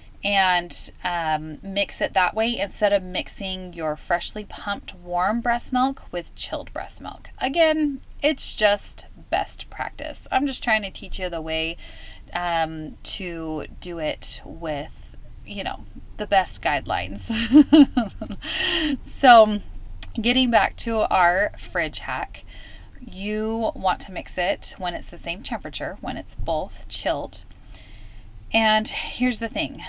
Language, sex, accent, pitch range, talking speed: English, female, American, 160-225 Hz, 135 wpm